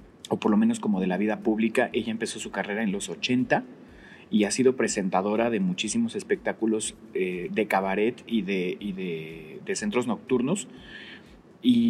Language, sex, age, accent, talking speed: Spanish, male, 30-49, Mexican, 165 wpm